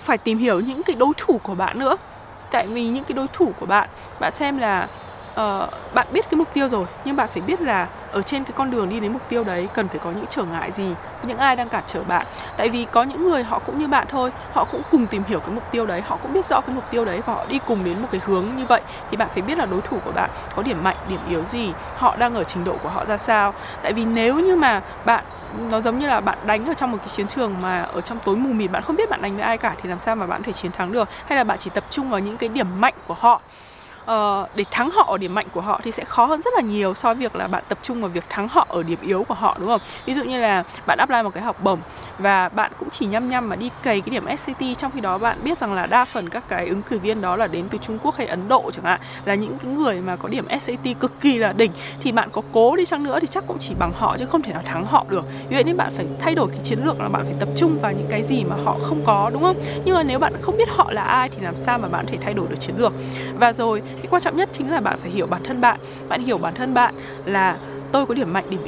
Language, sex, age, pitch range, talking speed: Vietnamese, female, 20-39, 200-270 Hz, 310 wpm